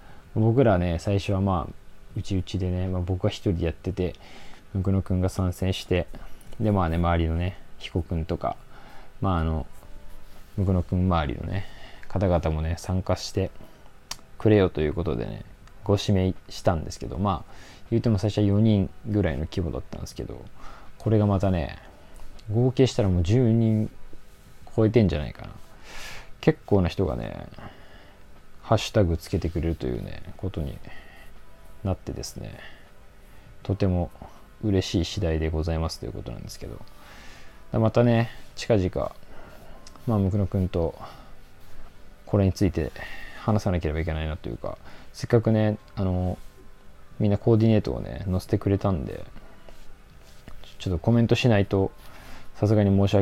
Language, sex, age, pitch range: Japanese, male, 20-39, 85-105 Hz